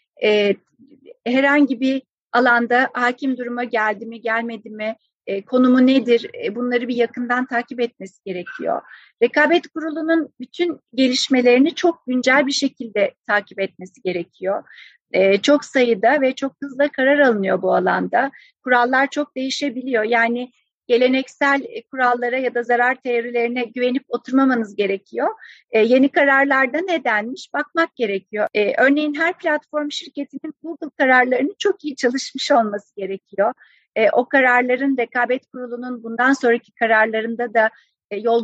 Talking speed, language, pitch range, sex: 120 wpm, Turkish, 220-275 Hz, female